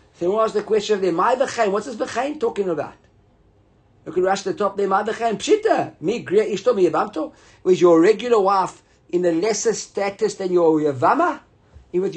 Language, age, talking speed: English, 50-69, 200 wpm